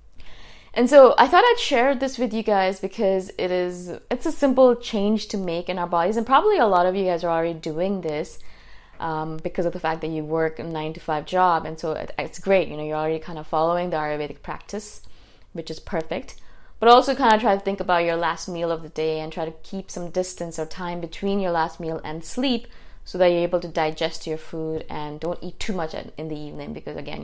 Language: English